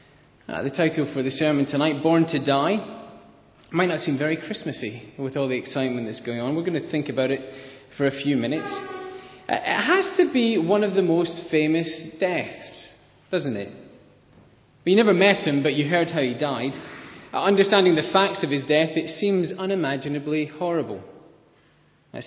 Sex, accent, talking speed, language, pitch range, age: male, British, 180 wpm, English, 130-165 Hz, 30-49